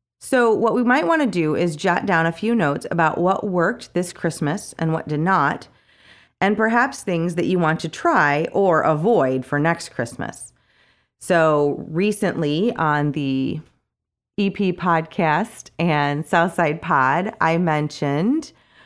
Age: 30-49